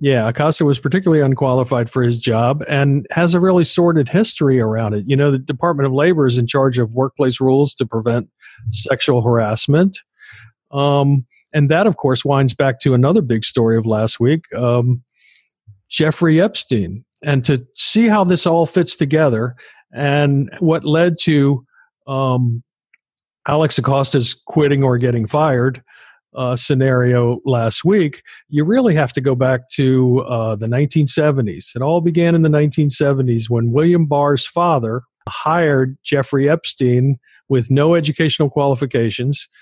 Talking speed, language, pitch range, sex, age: 150 wpm, English, 125-150 Hz, male, 50-69